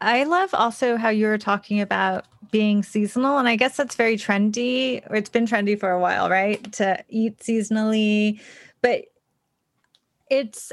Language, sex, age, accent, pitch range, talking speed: English, female, 30-49, American, 205-235 Hz, 155 wpm